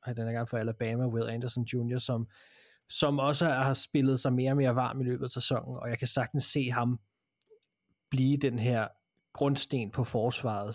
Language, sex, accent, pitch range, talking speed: Danish, male, native, 110-130 Hz, 195 wpm